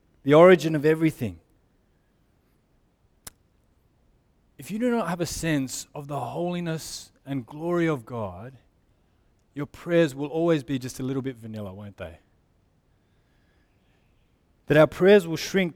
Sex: male